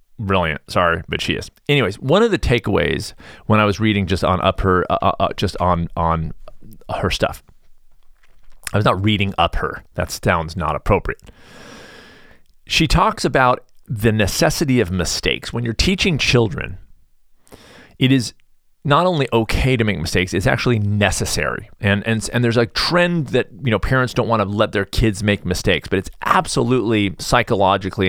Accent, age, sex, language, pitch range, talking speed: American, 40-59, male, English, 95-125 Hz, 170 wpm